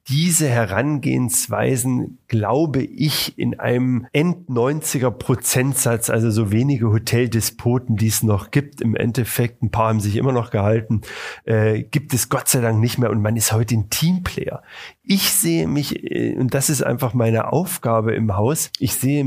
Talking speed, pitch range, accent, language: 160 wpm, 115-145 Hz, German, German